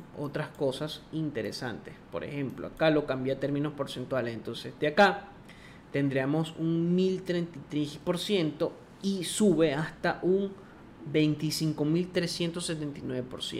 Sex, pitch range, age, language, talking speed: male, 140-175 Hz, 30-49, Spanish, 95 wpm